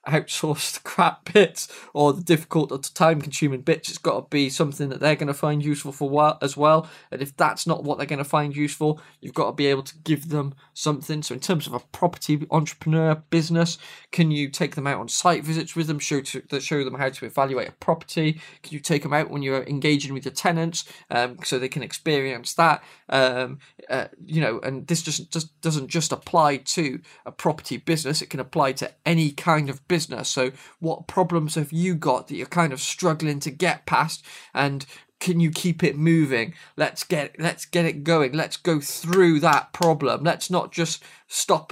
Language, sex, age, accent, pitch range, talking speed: English, male, 20-39, British, 140-165 Hz, 210 wpm